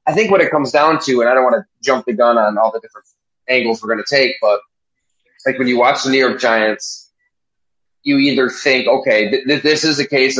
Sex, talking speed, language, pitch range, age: male, 240 wpm, English, 125-160 Hz, 20-39